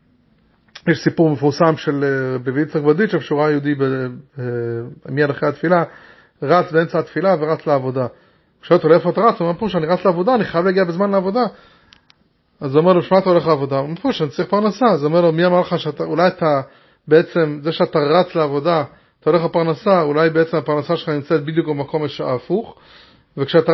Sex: male